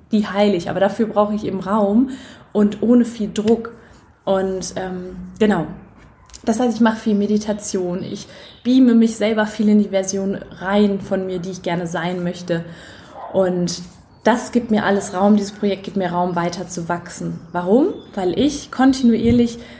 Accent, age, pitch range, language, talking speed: German, 20-39, 180-210 Hz, German, 165 wpm